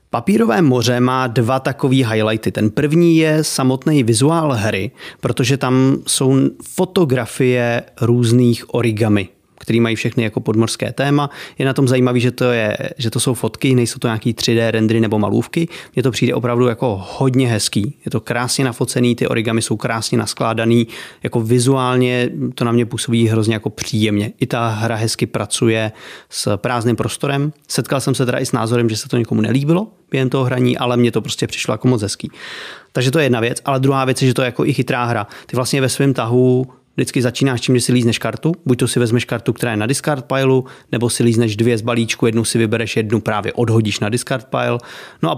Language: Czech